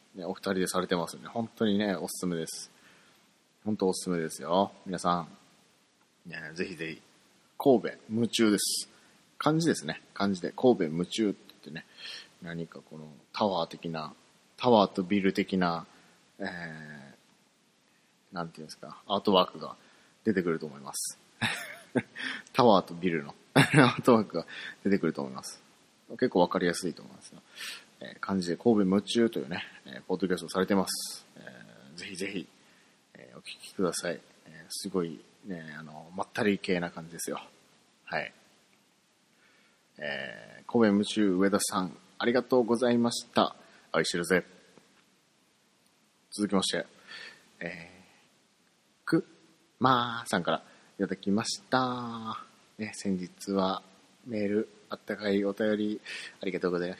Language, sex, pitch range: Japanese, male, 85-105 Hz